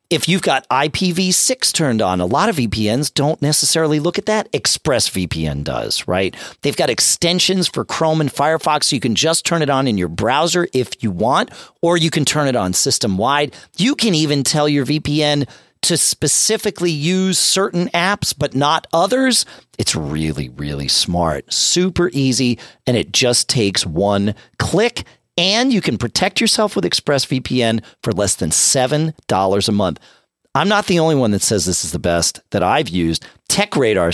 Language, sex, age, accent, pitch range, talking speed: English, male, 40-59, American, 100-170 Hz, 170 wpm